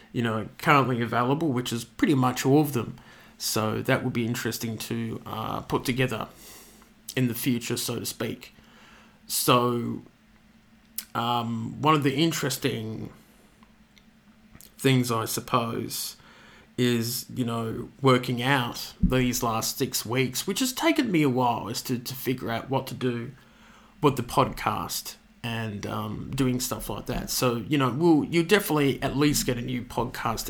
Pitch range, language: 115-135 Hz, English